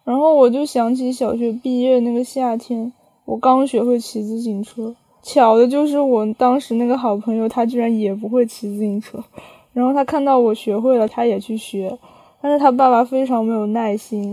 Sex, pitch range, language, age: female, 210-245 Hz, Chinese, 10-29